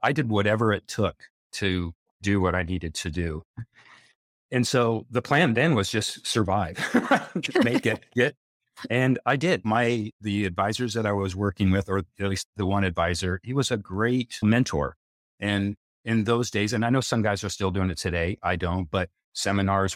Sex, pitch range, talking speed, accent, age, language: male, 90-110 Hz, 190 wpm, American, 40-59, English